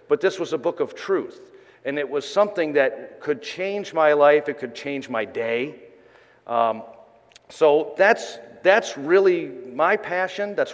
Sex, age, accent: male, 40-59, American